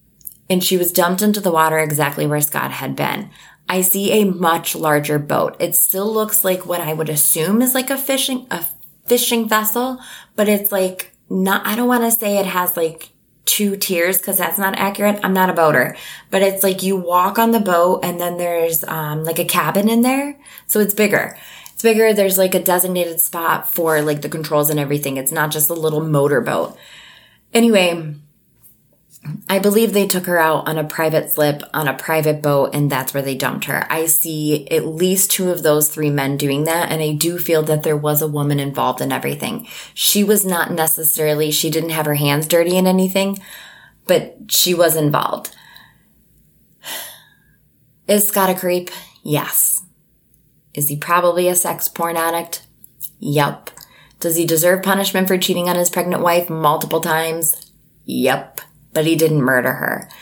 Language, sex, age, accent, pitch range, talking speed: English, female, 20-39, American, 155-190 Hz, 185 wpm